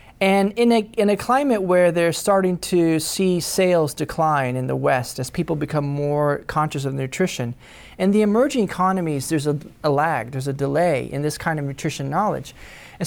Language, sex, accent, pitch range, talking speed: English, male, American, 145-185 Hz, 190 wpm